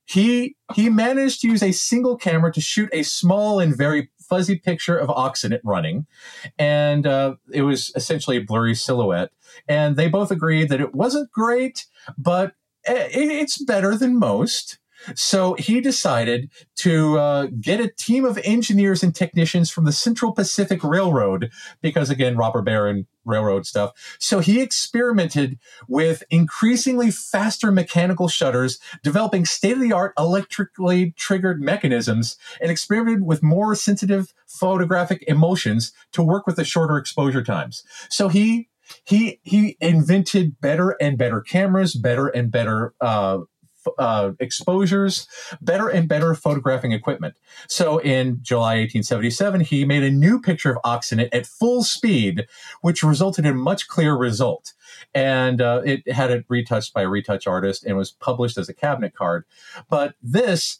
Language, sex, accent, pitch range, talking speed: English, male, American, 130-200 Hz, 150 wpm